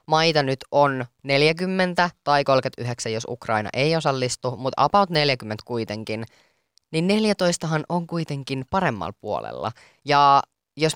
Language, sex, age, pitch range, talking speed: Finnish, female, 20-39, 125-165 Hz, 120 wpm